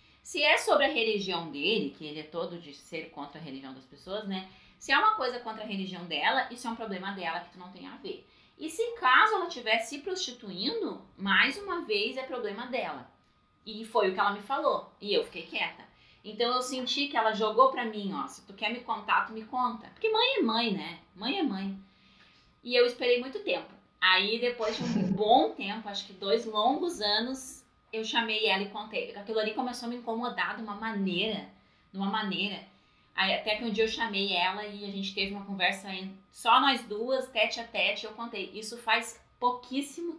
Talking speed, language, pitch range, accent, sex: 215 wpm, Portuguese, 195-250 Hz, Brazilian, female